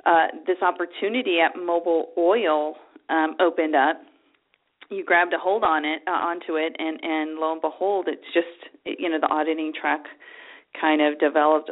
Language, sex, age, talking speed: English, female, 40-59, 170 wpm